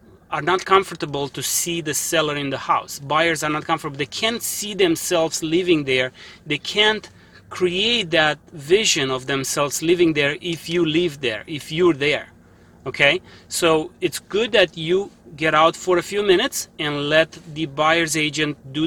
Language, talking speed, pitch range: English, 170 wpm, 140-175 Hz